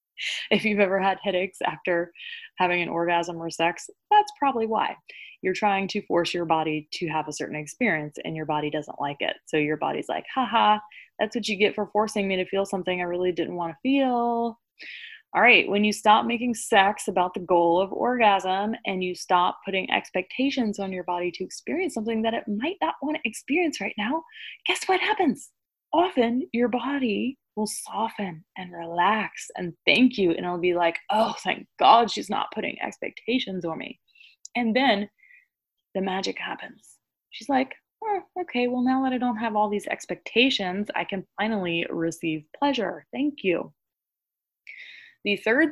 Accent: American